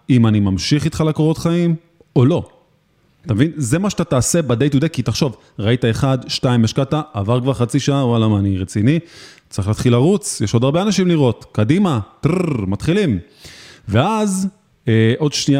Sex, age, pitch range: male, 30-49, 120-165 Hz